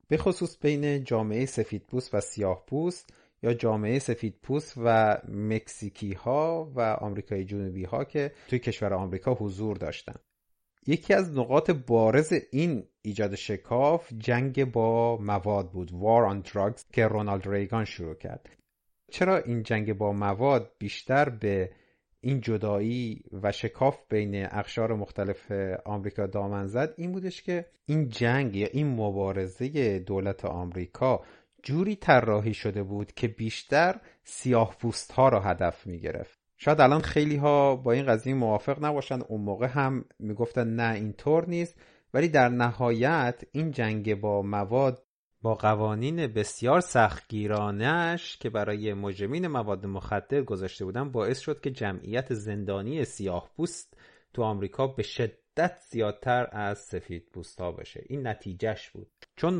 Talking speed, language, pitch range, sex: 140 wpm, Persian, 105-135 Hz, male